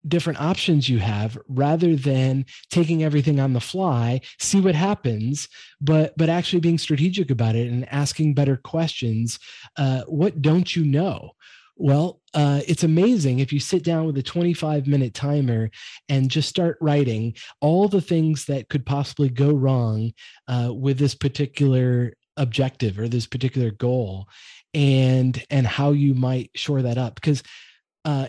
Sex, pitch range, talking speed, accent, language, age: male, 130-170 Hz, 155 wpm, American, English, 30-49